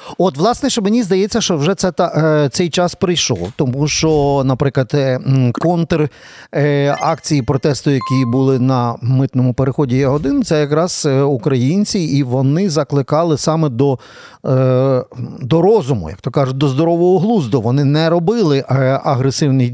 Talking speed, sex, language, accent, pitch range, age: 120 wpm, male, Ukrainian, native, 135-175 Hz, 50-69